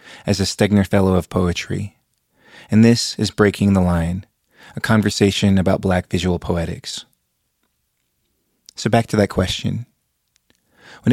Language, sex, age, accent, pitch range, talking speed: English, male, 30-49, American, 95-110 Hz, 130 wpm